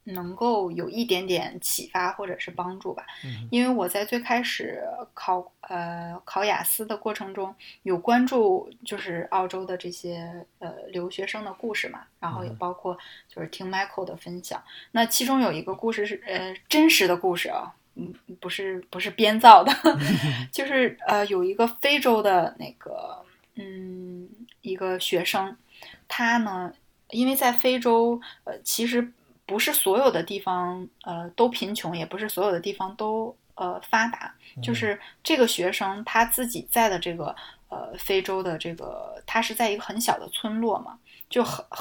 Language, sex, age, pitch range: Chinese, female, 20-39, 180-230 Hz